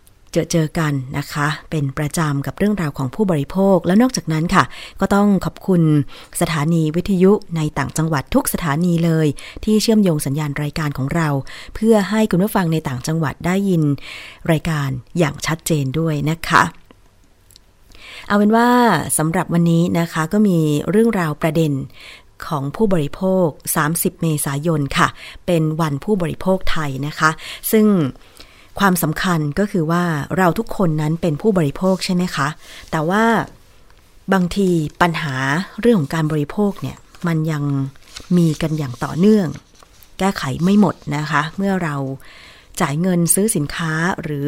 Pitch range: 145-185 Hz